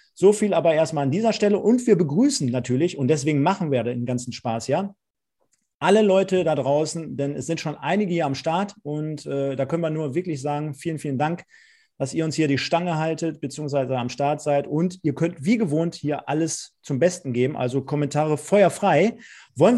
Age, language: 40-59, German